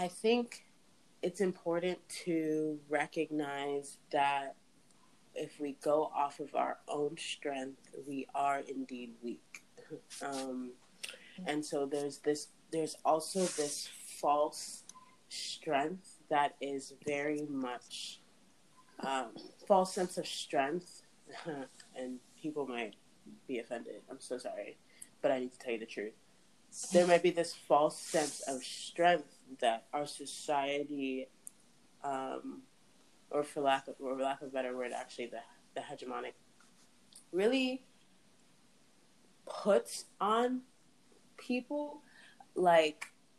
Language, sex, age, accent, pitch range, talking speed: English, female, 20-39, American, 135-175 Hz, 115 wpm